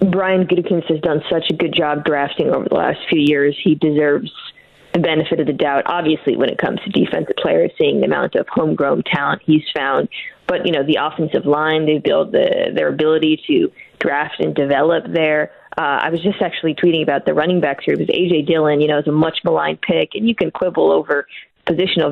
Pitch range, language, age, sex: 150-180 Hz, English, 20-39, female